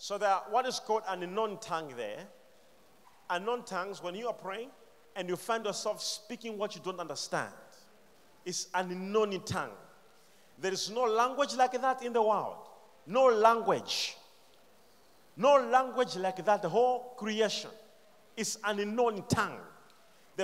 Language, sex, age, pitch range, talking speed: English, male, 40-59, 205-275 Hz, 150 wpm